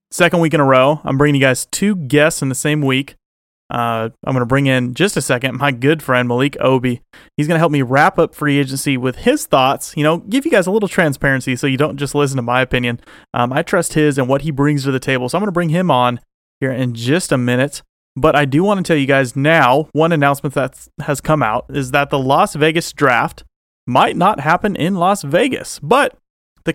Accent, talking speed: American, 240 wpm